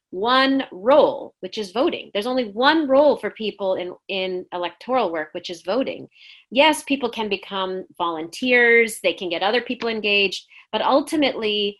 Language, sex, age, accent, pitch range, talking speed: English, female, 30-49, American, 190-260 Hz, 160 wpm